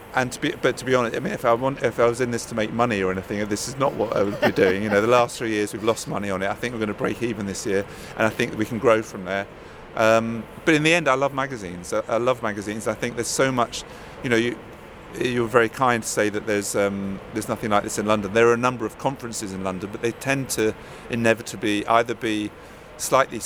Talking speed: 280 wpm